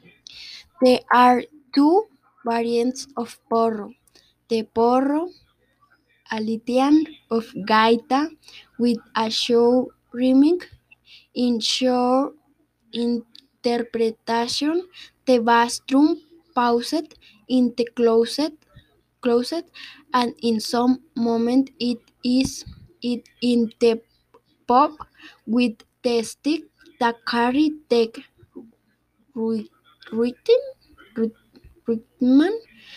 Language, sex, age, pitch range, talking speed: English, female, 10-29, 230-280 Hz, 75 wpm